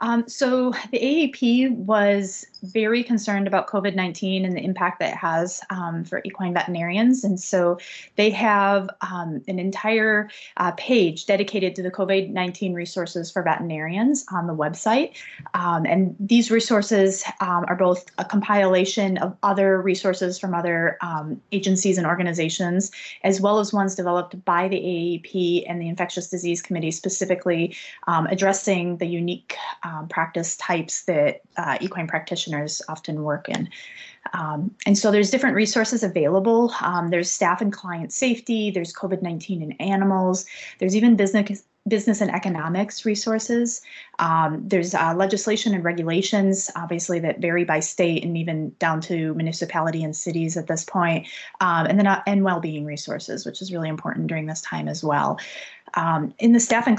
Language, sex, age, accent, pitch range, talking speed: English, female, 30-49, American, 170-205 Hz, 160 wpm